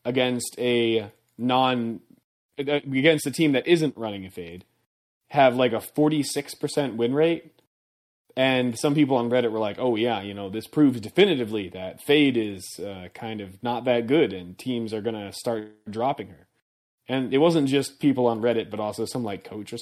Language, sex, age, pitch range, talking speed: English, male, 20-39, 110-140 Hz, 185 wpm